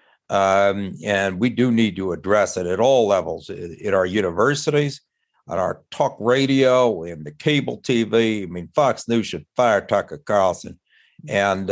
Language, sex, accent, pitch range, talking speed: English, male, American, 95-125 Hz, 165 wpm